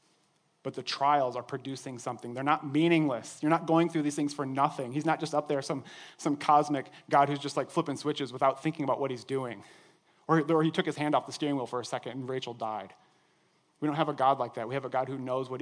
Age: 30-49